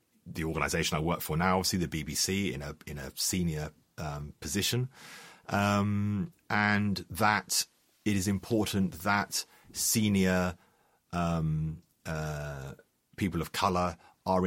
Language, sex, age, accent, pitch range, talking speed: English, male, 40-59, British, 85-120 Hz, 125 wpm